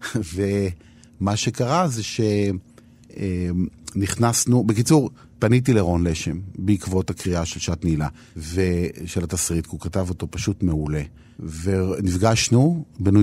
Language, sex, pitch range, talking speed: Hebrew, male, 90-120 Hz, 105 wpm